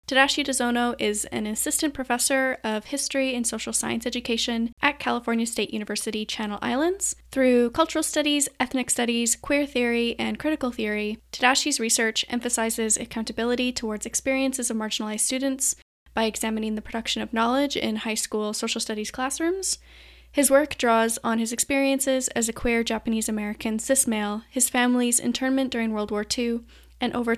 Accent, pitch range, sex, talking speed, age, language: American, 220-265 Hz, female, 155 wpm, 10-29, English